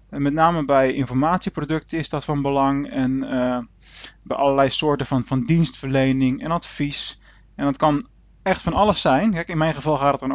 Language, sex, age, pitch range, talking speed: Dutch, male, 20-39, 135-170 Hz, 190 wpm